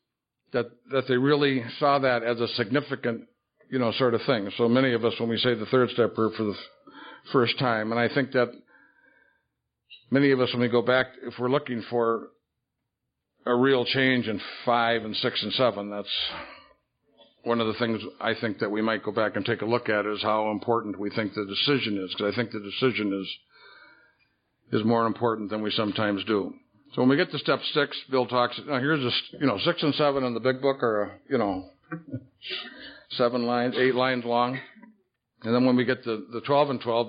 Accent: American